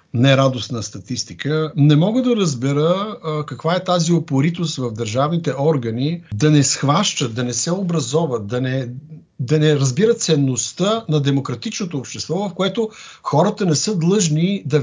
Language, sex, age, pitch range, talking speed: Bulgarian, male, 60-79, 115-160 Hz, 150 wpm